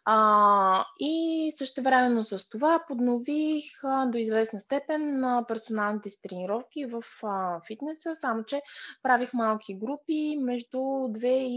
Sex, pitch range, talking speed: female, 210-270 Hz, 130 wpm